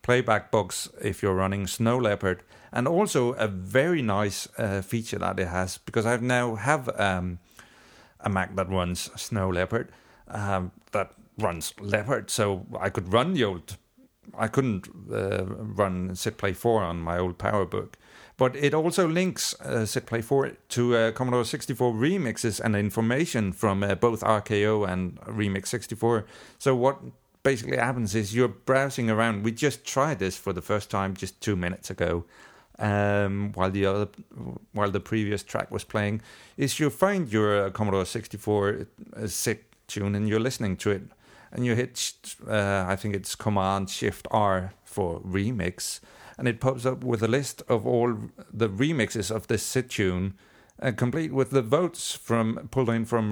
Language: English